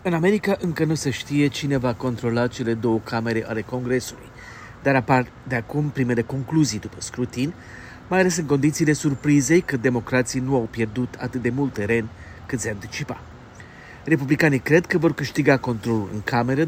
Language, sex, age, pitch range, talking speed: Romanian, male, 40-59, 115-145 Hz, 170 wpm